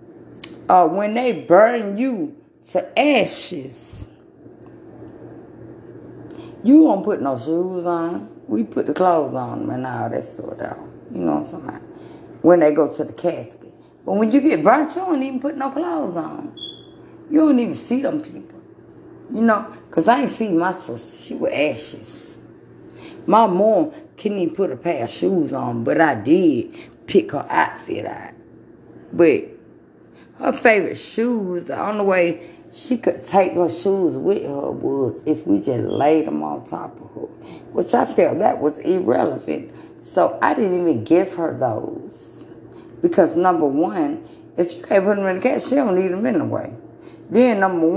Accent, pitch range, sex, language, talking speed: American, 175-285 Hz, female, English, 170 wpm